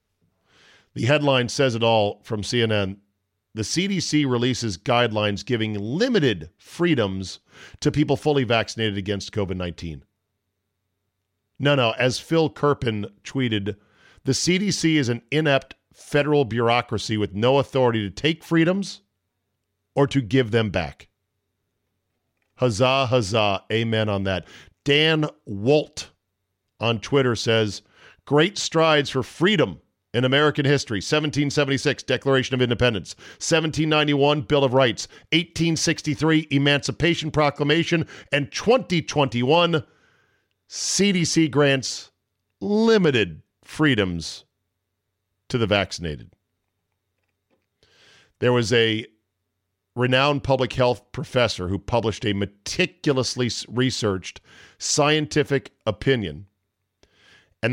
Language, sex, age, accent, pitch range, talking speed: English, male, 40-59, American, 100-145 Hz, 100 wpm